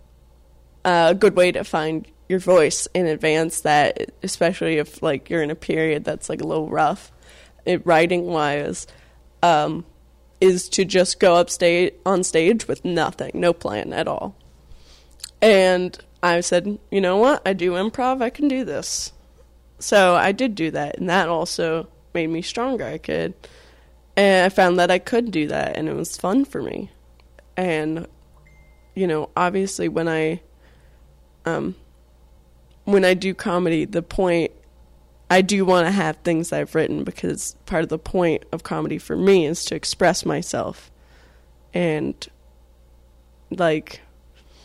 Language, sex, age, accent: English, female, 20-39, American